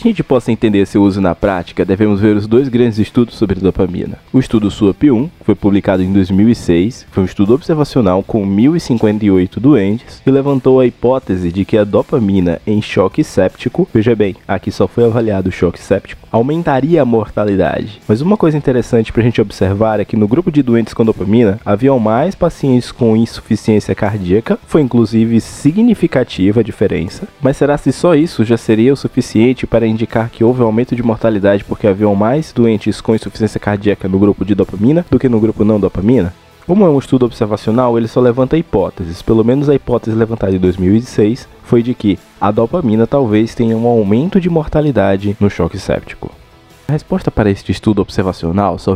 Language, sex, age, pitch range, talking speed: Portuguese, male, 20-39, 100-125 Hz, 185 wpm